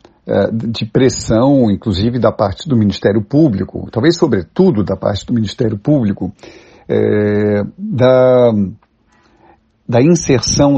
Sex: male